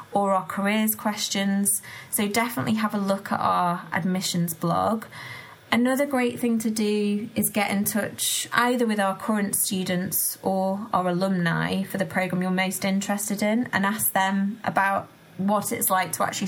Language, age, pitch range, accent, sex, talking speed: English, 20-39, 185-215 Hz, British, female, 170 wpm